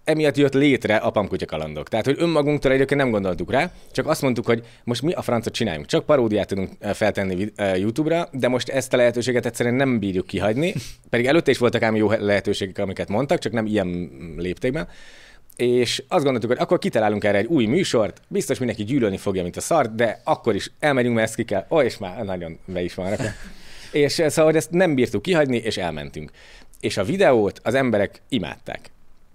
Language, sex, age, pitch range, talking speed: Hungarian, male, 30-49, 105-140 Hz, 195 wpm